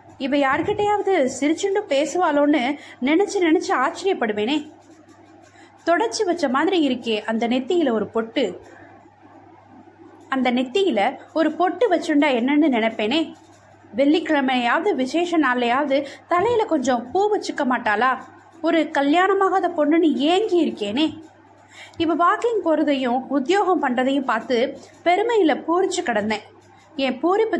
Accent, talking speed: native, 100 wpm